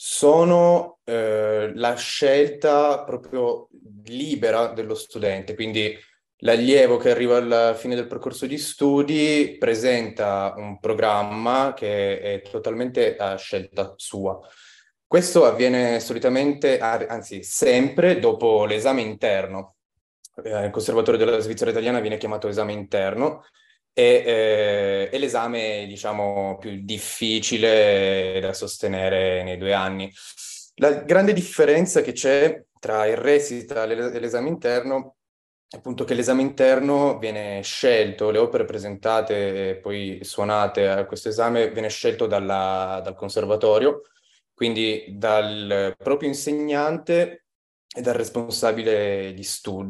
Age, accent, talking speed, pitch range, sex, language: 20-39, native, 115 wpm, 105-175 Hz, male, Italian